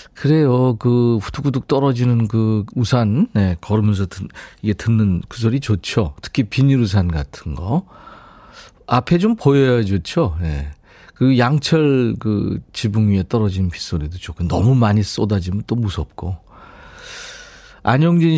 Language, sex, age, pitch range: Korean, male, 40-59, 95-145 Hz